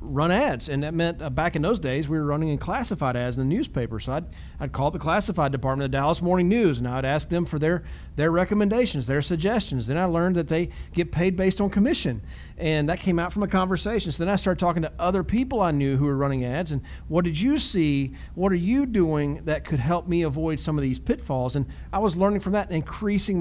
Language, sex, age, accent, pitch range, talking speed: English, male, 40-59, American, 145-195 Hz, 250 wpm